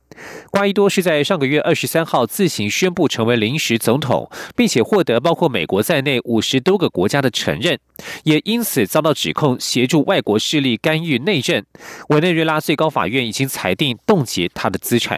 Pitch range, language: 125-180 Hz, German